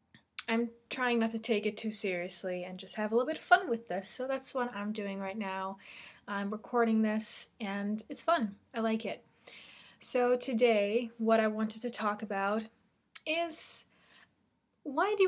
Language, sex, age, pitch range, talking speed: English, female, 20-39, 205-240 Hz, 175 wpm